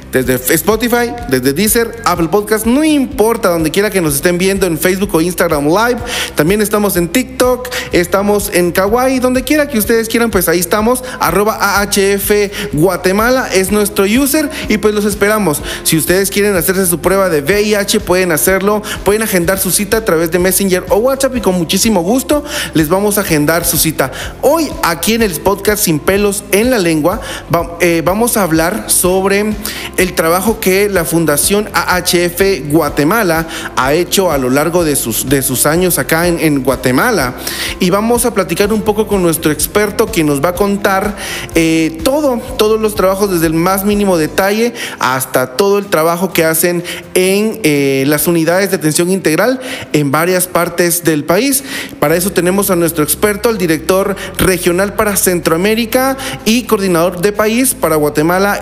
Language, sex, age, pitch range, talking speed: Spanish, male, 30-49, 170-215 Hz, 170 wpm